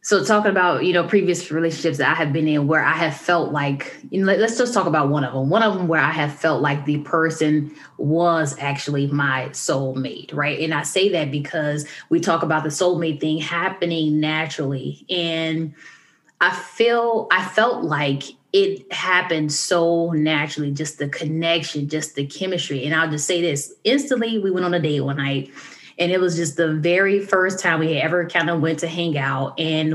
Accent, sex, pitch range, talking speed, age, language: American, female, 155-195 Hz, 195 wpm, 10-29, English